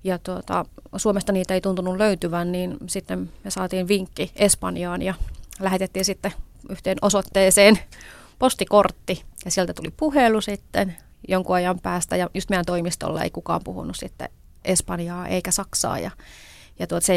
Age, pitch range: 30-49, 170-195 Hz